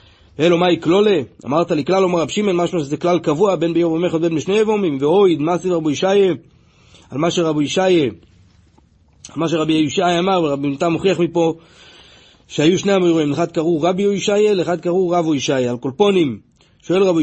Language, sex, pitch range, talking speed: Hebrew, male, 150-185 Hz, 180 wpm